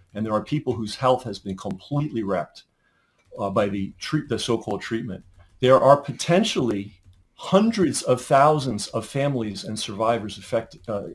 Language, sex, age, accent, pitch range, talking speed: English, male, 40-59, American, 110-140 Hz, 145 wpm